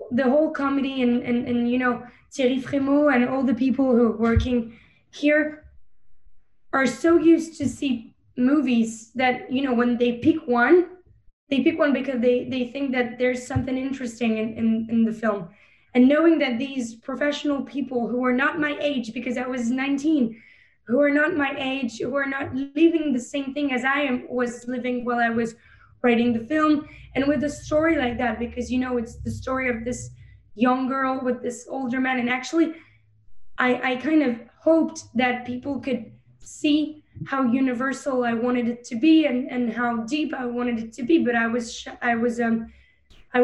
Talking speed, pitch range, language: 195 wpm, 240-280 Hz, English